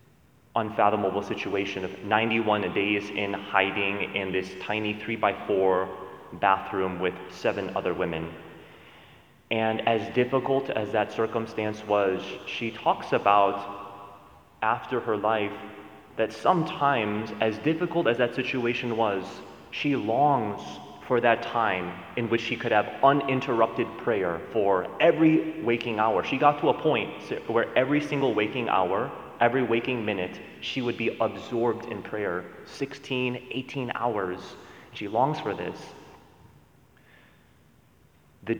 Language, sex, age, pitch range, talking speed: English, male, 30-49, 100-125 Hz, 125 wpm